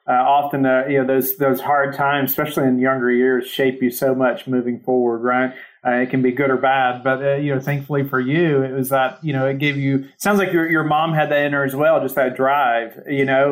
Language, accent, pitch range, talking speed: English, American, 125-140 Hz, 255 wpm